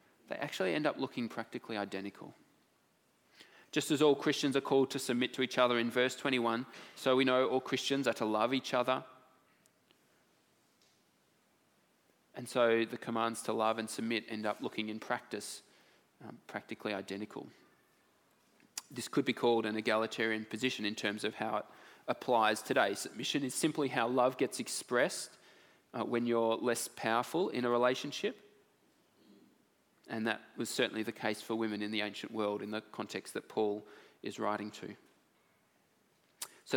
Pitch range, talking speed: 110-140 Hz, 160 wpm